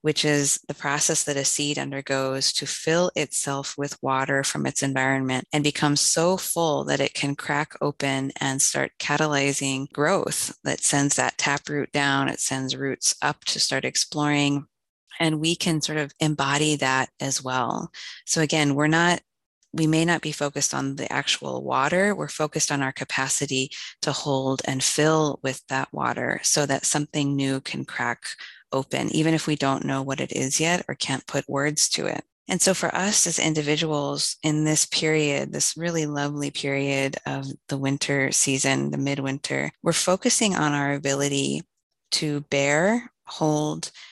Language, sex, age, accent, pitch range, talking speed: English, female, 20-39, American, 135-155 Hz, 170 wpm